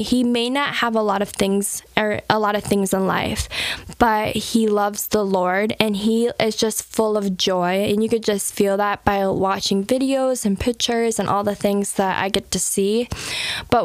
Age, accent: 10-29, American